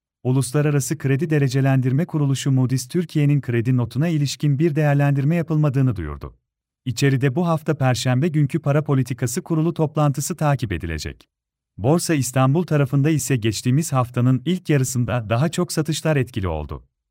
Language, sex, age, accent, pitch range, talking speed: Turkish, male, 40-59, native, 125-155 Hz, 130 wpm